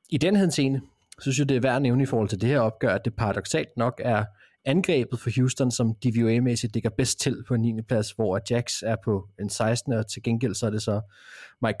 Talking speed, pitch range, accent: 240 wpm, 110-135 Hz, native